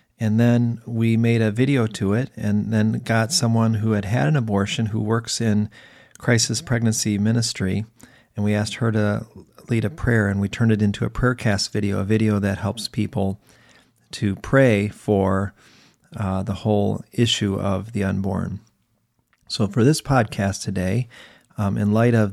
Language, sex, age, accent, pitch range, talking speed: English, male, 40-59, American, 100-120 Hz, 170 wpm